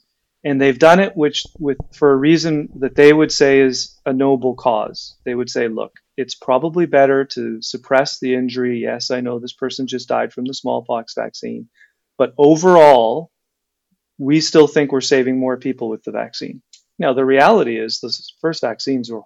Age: 30-49